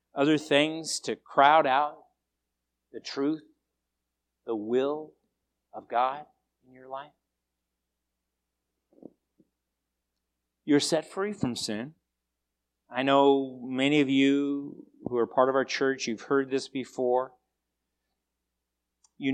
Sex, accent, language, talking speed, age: male, American, English, 110 wpm, 50-69